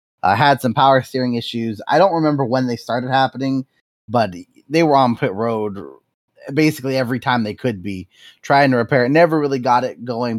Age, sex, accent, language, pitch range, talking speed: 20-39, male, American, English, 115-150 Hz, 195 wpm